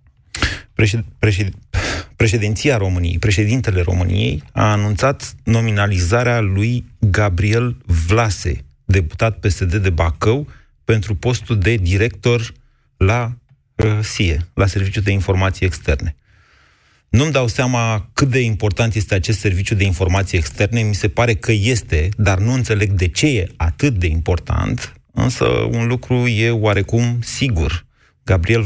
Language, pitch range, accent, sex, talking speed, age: Romanian, 95-115 Hz, native, male, 125 wpm, 30-49